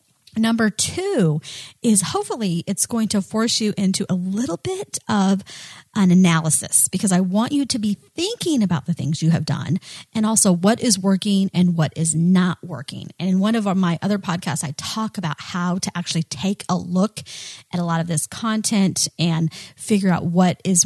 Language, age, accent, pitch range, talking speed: English, 30-49, American, 160-205 Hz, 190 wpm